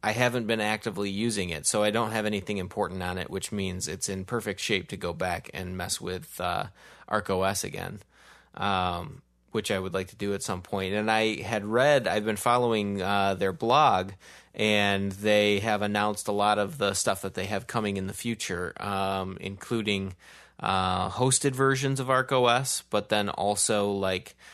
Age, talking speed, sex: 20-39, 185 wpm, male